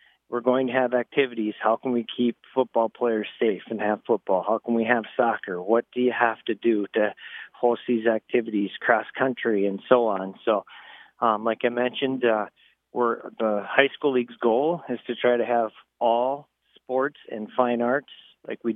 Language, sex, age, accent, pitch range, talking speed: English, male, 40-59, American, 110-125 Hz, 190 wpm